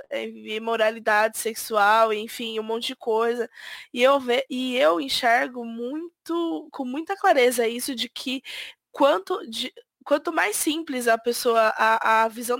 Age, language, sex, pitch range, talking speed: 20-39, Portuguese, female, 235-300 Hz, 145 wpm